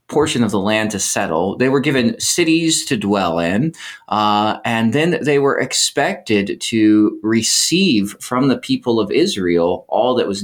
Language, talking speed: English, 165 wpm